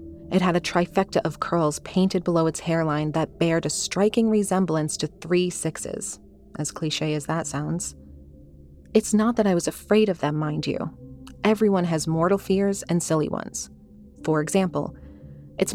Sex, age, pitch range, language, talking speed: female, 30-49, 155-185 Hz, English, 165 wpm